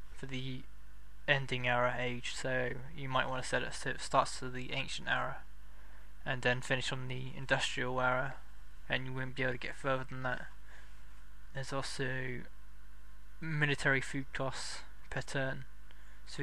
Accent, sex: British, male